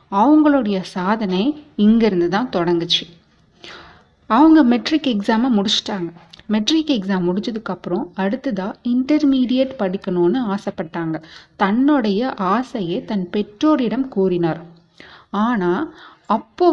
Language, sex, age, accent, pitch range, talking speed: Tamil, female, 30-49, native, 185-255 Hz, 85 wpm